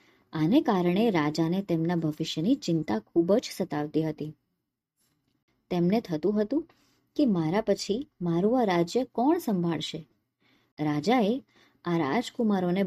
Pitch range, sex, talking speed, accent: 155-230 Hz, male, 105 wpm, native